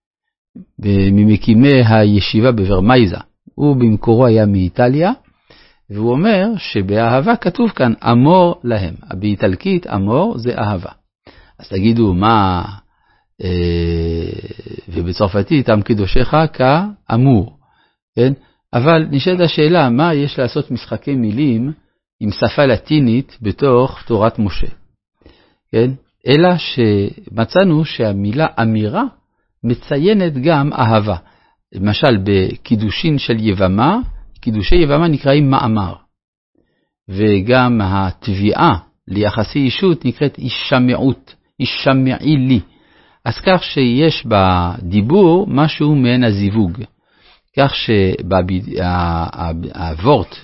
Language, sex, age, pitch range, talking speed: Hebrew, male, 50-69, 100-145 Hz, 90 wpm